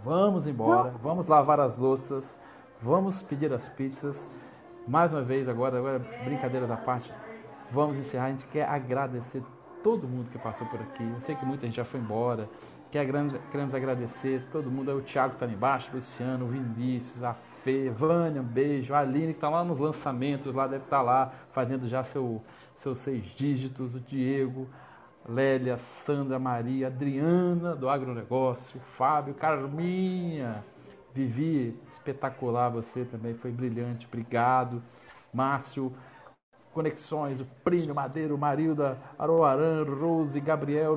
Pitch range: 125-160 Hz